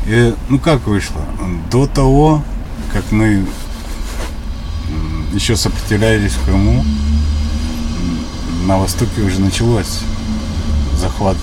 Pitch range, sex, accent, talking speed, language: 80-105 Hz, male, native, 90 wpm, Ukrainian